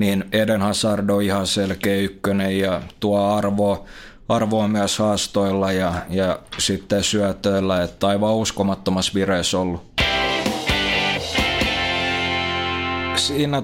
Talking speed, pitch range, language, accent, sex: 95 wpm, 95-110 Hz, Finnish, native, male